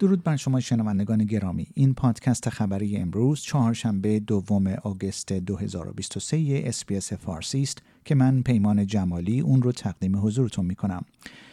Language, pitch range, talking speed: Persian, 105-140 Hz, 135 wpm